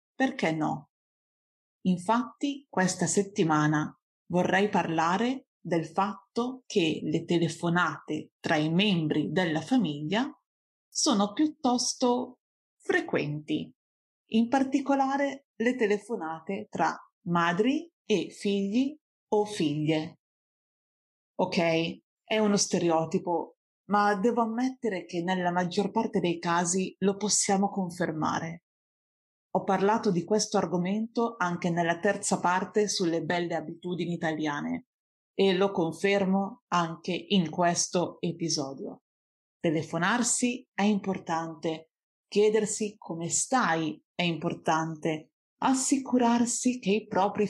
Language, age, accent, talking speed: Italian, 30-49, native, 100 wpm